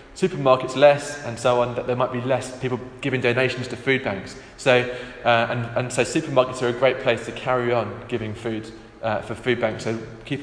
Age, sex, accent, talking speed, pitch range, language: 20-39, male, British, 215 wpm, 115-135 Hz, English